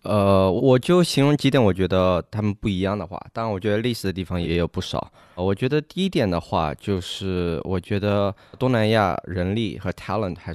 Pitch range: 85-100 Hz